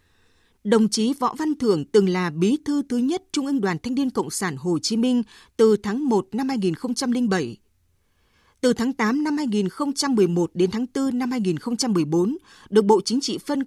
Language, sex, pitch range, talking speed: Vietnamese, female, 185-270 Hz, 180 wpm